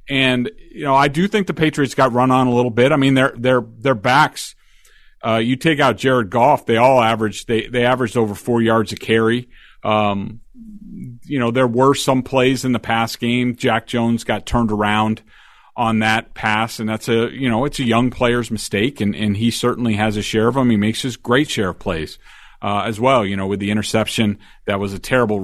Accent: American